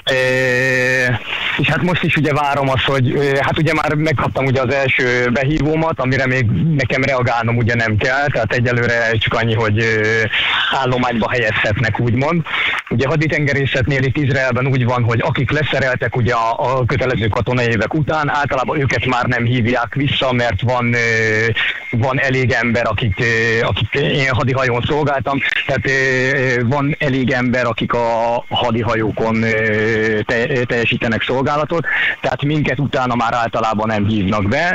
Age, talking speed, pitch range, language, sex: 30-49, 140 wpm, 120-140 Hz, Hungarian, male